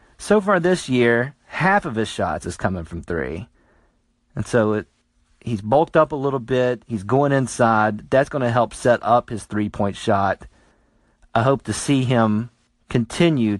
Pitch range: 100-135 Hz